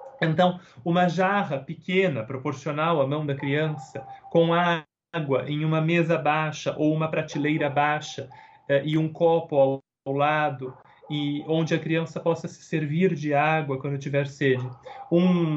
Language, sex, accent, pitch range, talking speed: Portuguese, male, Brazilian, 140-175 Hz, 145 wpm